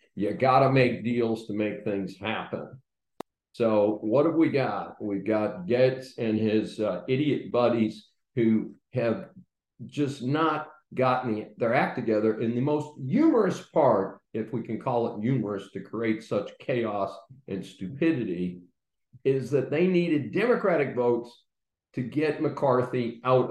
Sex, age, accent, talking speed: male, 50-69, American, 145 wpm